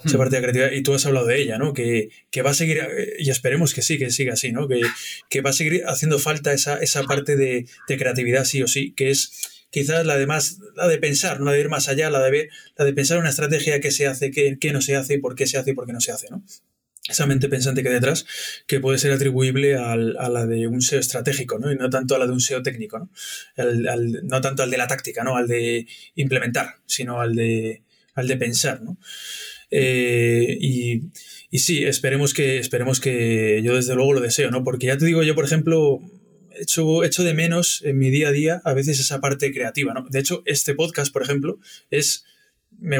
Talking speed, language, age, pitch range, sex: 245 wpm, Spanish, 20-39, 125-150 Hz, male